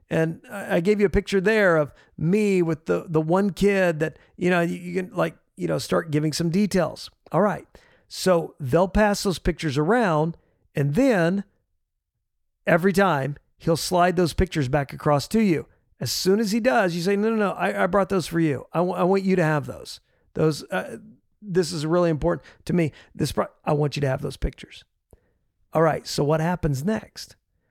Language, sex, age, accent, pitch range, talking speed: English, male, 50-69, American, 145-185 Hz, 200 wpm